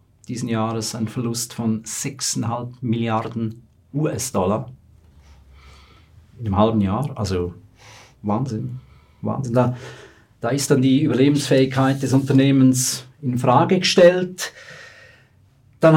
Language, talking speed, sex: German, 100 wpm, male